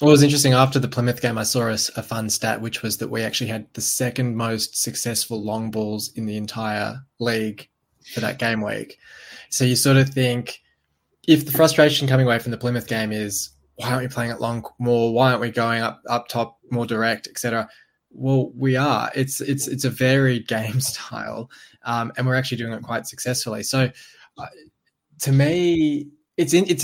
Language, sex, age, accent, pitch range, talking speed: English, male, 20-39, Australian, 115-135 Hz, 205 wpm